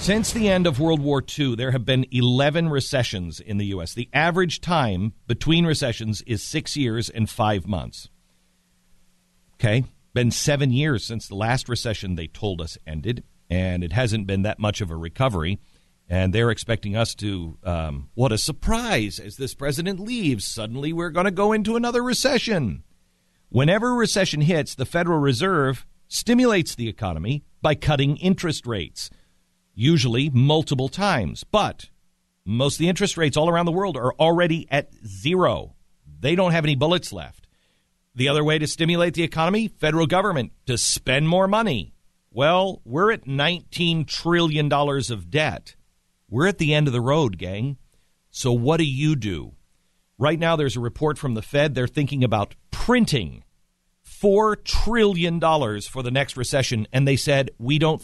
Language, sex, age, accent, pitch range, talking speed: English, male, 50-69, American, 110-160 Hz, 165 wpm